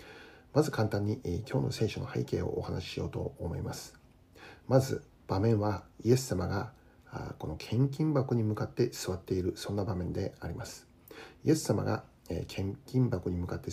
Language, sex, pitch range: Japanese, male, 95-130 Hz